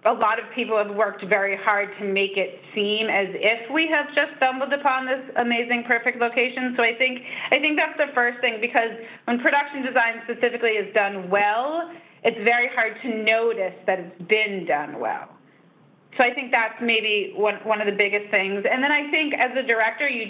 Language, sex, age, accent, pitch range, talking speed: English, female, 30-49, American, 195-235 Hz, 205 wpm